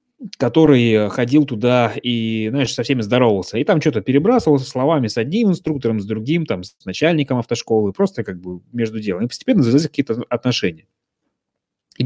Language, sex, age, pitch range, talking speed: Russian, male, 20-39, 105-140 Hz, 160 wpm